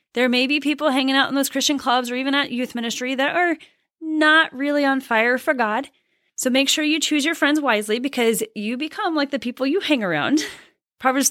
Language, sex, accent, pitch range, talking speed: English, female, American, 225-295 Hz, 220 wpm